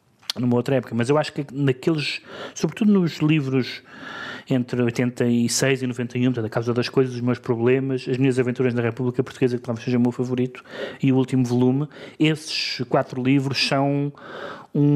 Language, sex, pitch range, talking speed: Portuguese, male, 120-140 Hz, 175 wpm